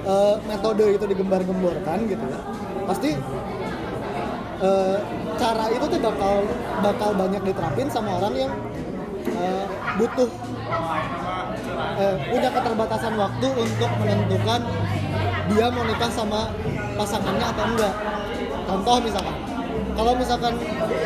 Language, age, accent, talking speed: Indonesian, 20-39, native, 95 wpm